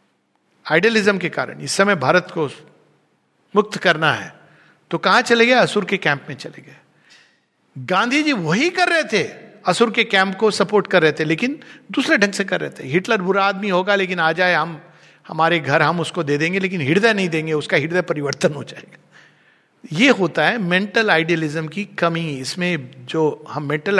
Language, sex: Hindi, male